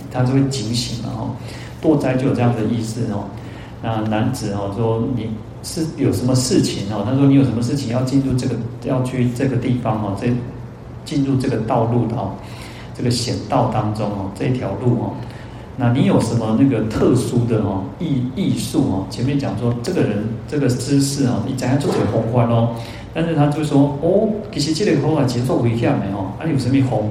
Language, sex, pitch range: Chinese, male, 110-135 Hz